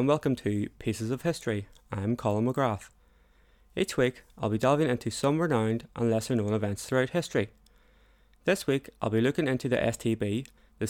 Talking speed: 175 wpm